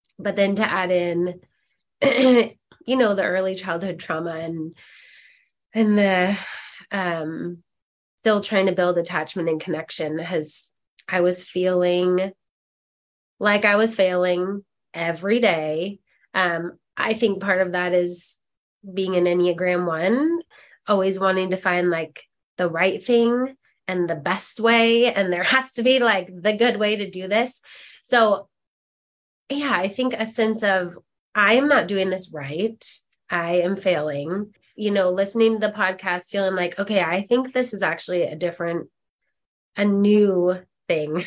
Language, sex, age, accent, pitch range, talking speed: English, female, 20-39, American, 180-215 Hz, 150 wpm